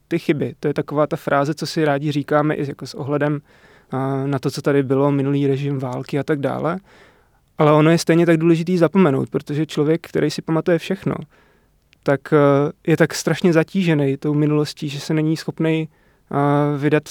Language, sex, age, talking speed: Czech, male, 20-39, 190 wpm